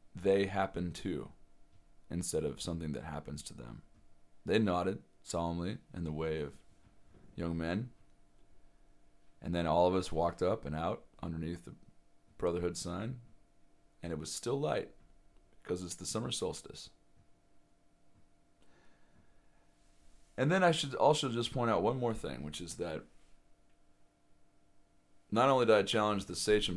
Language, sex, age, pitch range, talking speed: English, male, 30-49, 75-100 Hz, 140 wpm